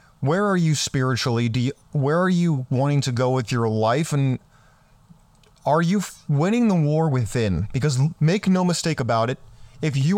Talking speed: 185 wpm